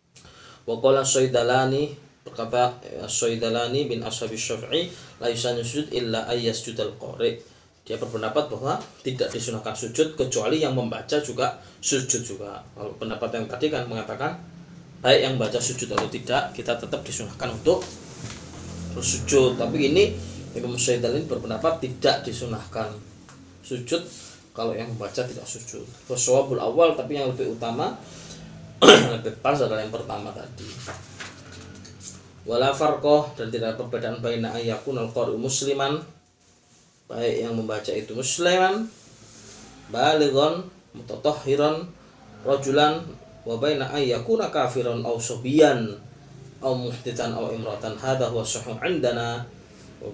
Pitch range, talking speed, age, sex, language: 115-140 Hz, 120 wpm, 20-39, male, Malay